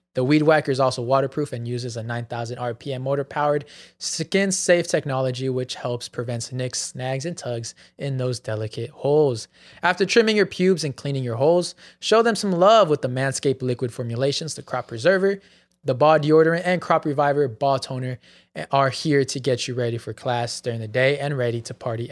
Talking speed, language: 185 wpm, English